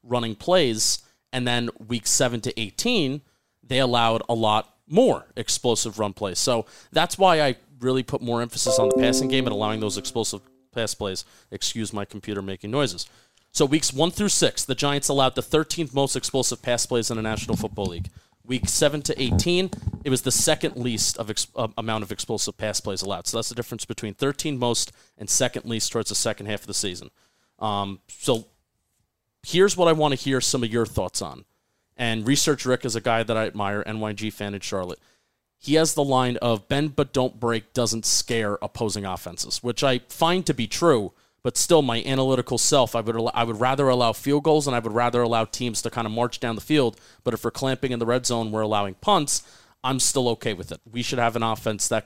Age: 30-49